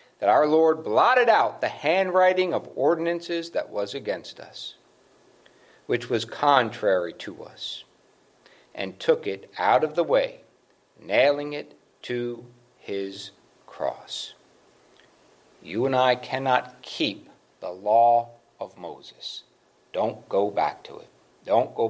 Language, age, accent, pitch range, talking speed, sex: English, 60-79, American, 105-150 Hz, 125 wpm, male